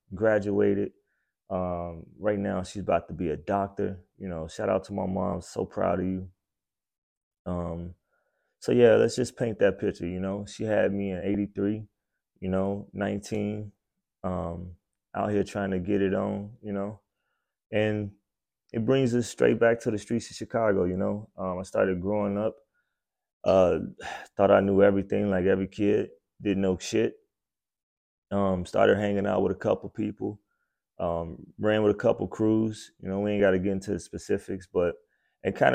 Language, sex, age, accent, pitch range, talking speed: English, male, 20-39, American, 90-105 Hz, 175 wpm